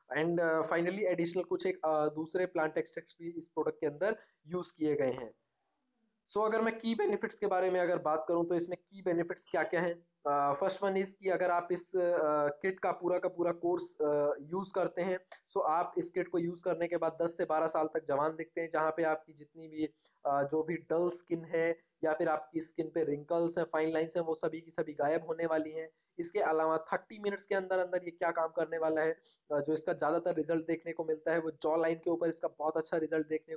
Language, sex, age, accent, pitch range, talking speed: Hindi, male, 20-39, native, 160-180 Hz, 220 wpm